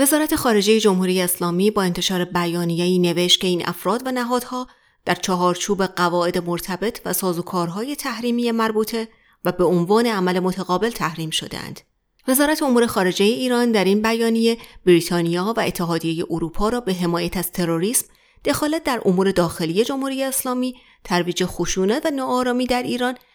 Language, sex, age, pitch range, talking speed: Persian, female, 30-49, 175-235 Hz, 140 wpm